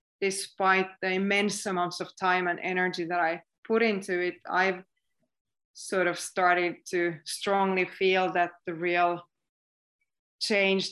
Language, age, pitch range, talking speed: English, 20-39, 180-195 Hz, 130 wpm